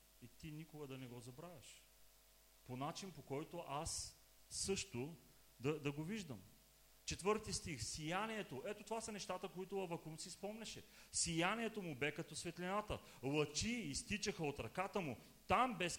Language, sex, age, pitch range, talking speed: English, male, 40-59, 130-190 Hz, 150 wpm